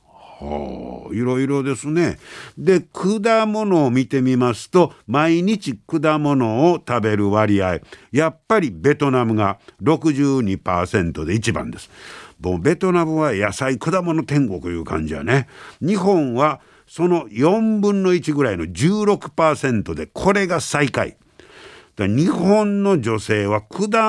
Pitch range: 105-170 Hz